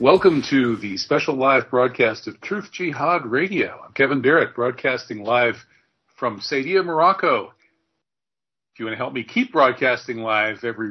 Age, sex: 40-59, male